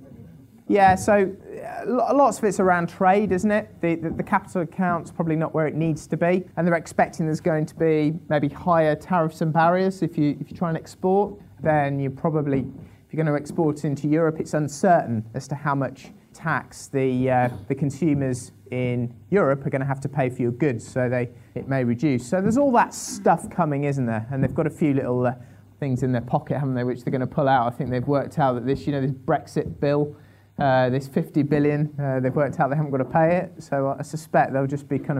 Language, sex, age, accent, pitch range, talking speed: English, male, 30-49, British, 130-180 Hz, 240 wpm